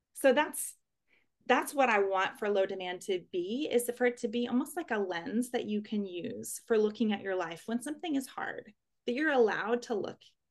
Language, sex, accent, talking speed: English, female, American, 215 wpm